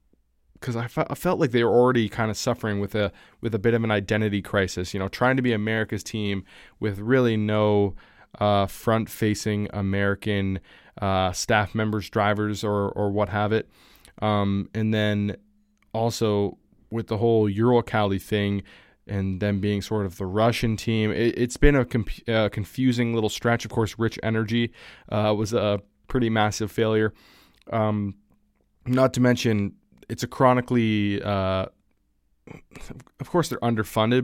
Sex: male